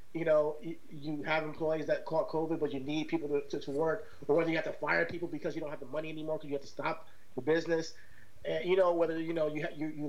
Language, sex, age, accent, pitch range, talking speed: English, male, 30-49, American, 155-190 Hz, 280 wpm